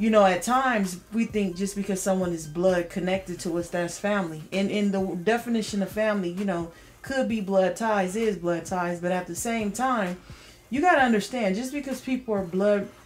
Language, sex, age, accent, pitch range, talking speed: English, female, 30-49, American, 180-215 Hz, 205 wpm